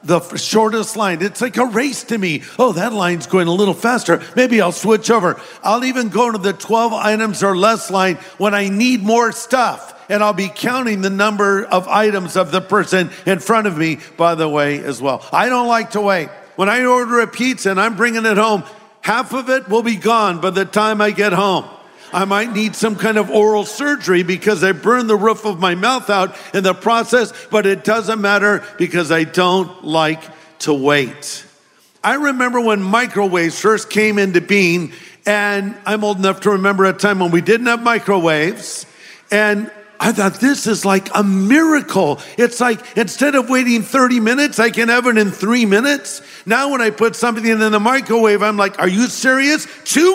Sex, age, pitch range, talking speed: male, 50-69, 185-230 Hz, 200 wpm